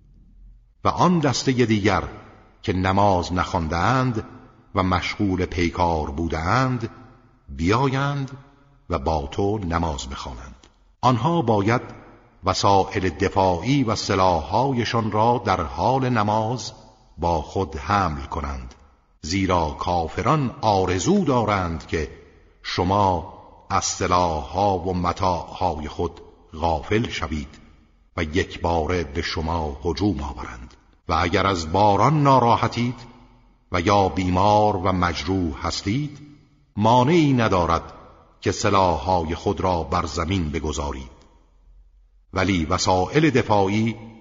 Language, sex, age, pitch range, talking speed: Persian, male, 50-69, 80-110 Hz, 105 wpm